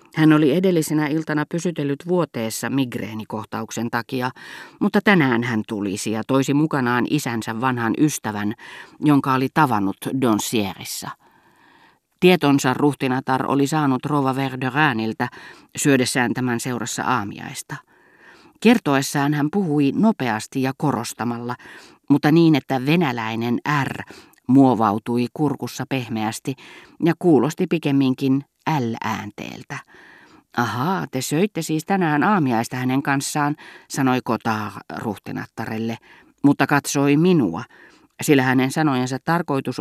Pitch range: 120-155 Hz